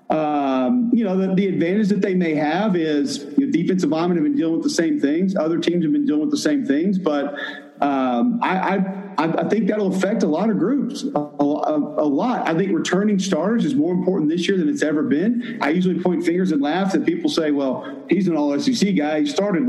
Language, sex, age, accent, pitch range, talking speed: English, male, 50-69, American, 175-250 Hz, 235 wpm